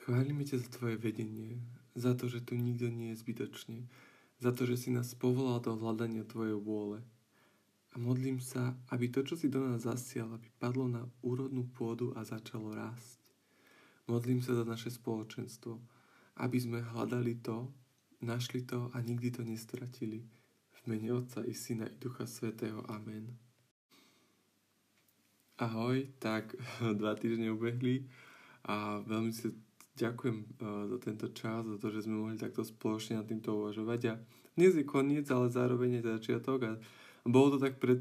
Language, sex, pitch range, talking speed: Slovak, male, 115-125 Hz, 160 wpm